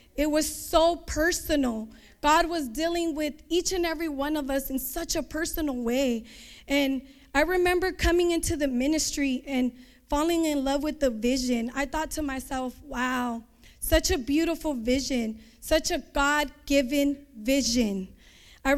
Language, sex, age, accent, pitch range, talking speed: English, female, 10-29, American, 265-330 Hz, 150 wpm